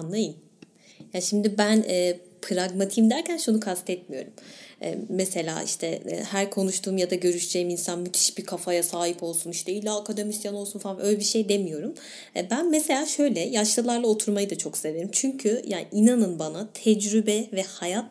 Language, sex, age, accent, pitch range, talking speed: Turkish, female, 30-49, native, 180-220 Hz, 150 wpm